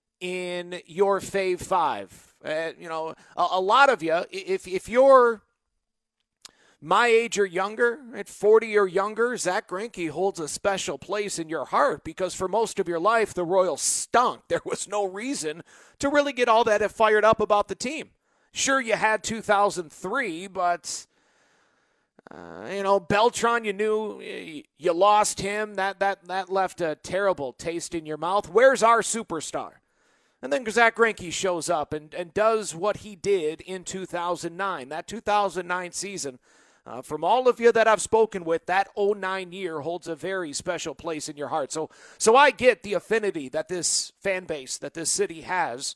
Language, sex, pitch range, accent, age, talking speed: English, male, 175-220 Hz, American, 40-59, 175 wpm